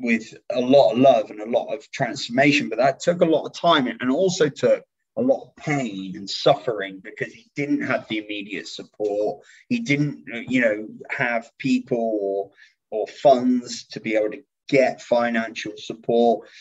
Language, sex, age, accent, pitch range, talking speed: English, male, 20-39, British, 115-145 Hz, 175 wpm